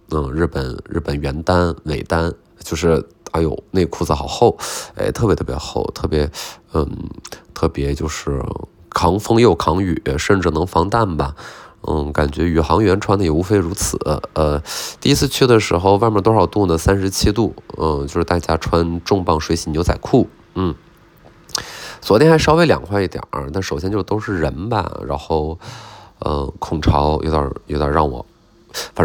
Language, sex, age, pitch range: Chinese, male, 20-39, 80-110 Hz